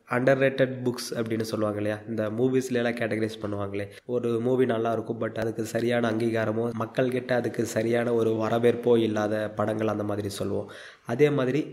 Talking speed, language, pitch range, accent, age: 155 wpm, Tamil, 115-140 Hz, native, 20-39